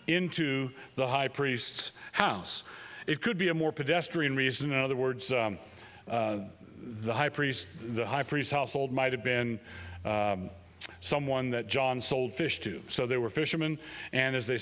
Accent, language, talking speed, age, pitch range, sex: American, English, 170 wpm, 40-59, 120-150 Hz, male